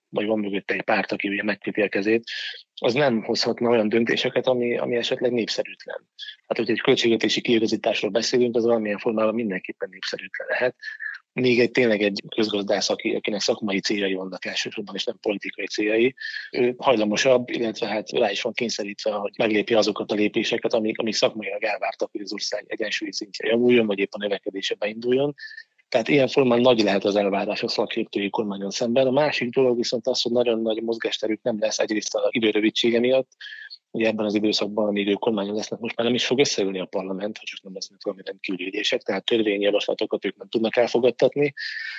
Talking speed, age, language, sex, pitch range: 175 wpm, 20-39, Hungarian, male, 105-125 Hz